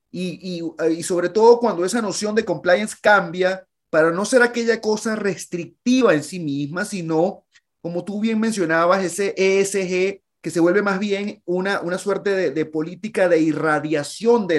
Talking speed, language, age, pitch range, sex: 170 wpm, Spanish, 30-49, 150-185 Hz, male